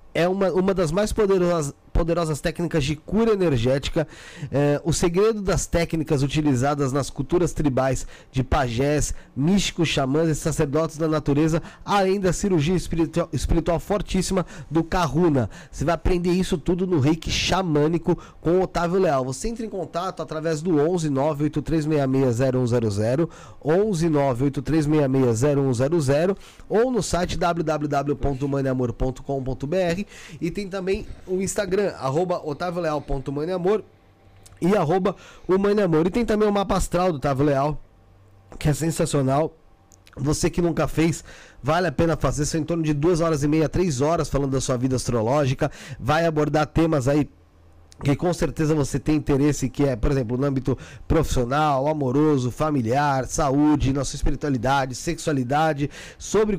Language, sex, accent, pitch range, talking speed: Portuguese, male, Brazilian, 140-175 Hz, 140 wpm